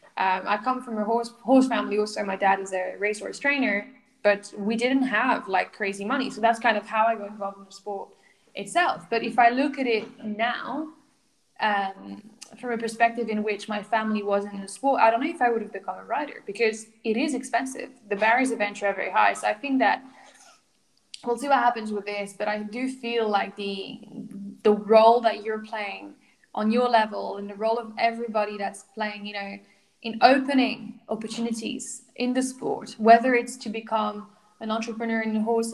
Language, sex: English, female